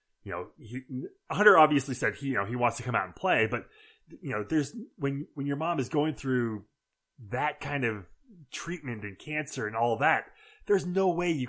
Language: English